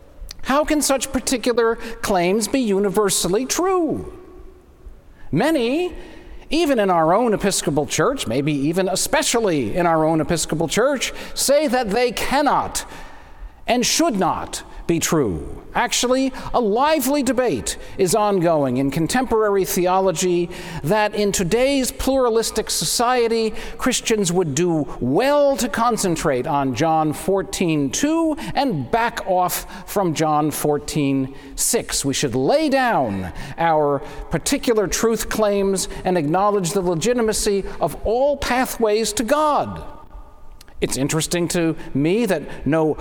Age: 50-69